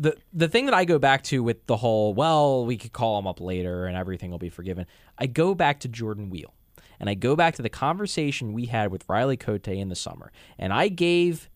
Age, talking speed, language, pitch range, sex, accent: 20-39, 245 wpm, English, 115-175 Hz, male, American